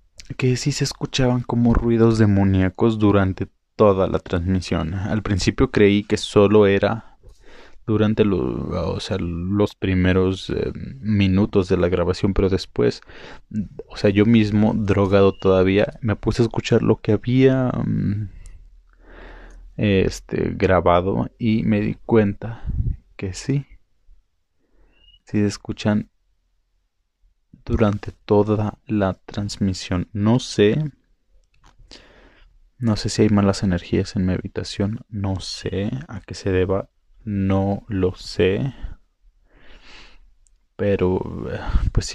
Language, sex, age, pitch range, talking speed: Spanish, male, 20-39, 95-110 Hz, 115 wpm